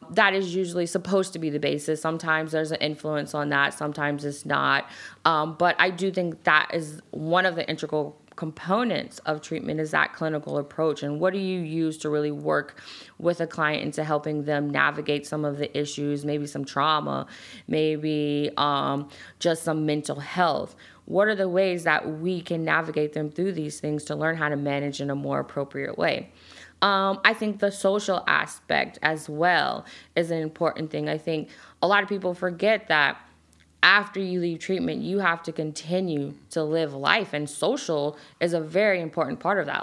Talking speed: 190 wpm